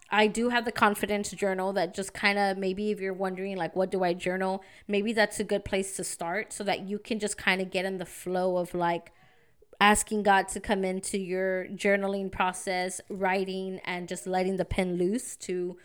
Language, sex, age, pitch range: English, female, 20-39, 185-215 Hz